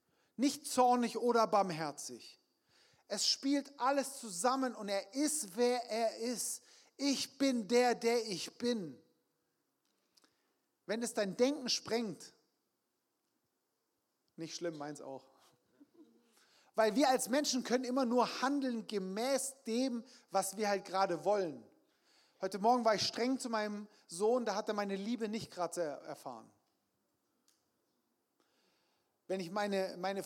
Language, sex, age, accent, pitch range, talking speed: German, male, 40-59, German, 205-255 Hz, 125 wpm